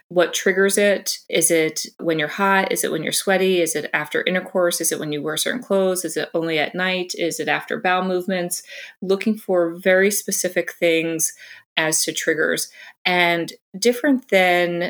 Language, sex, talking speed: English, female, 180 wpm